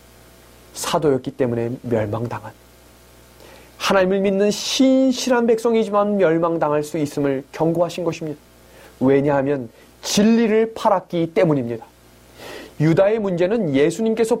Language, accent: Korean, native